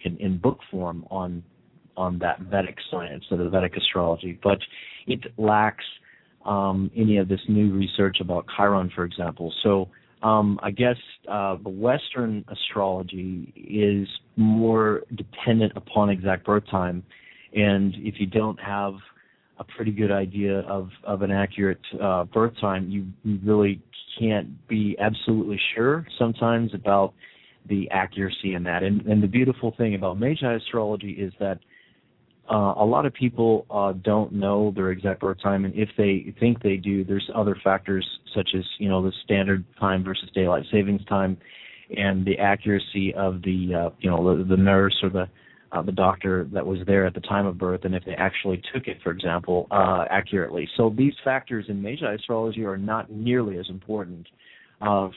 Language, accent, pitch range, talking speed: English, American, 95-105 Hz, 170 wpm